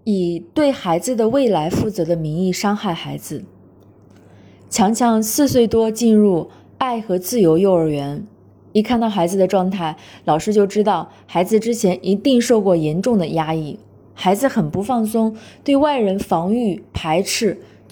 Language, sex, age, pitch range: Chinese, female, 20-39, 160-225 Hz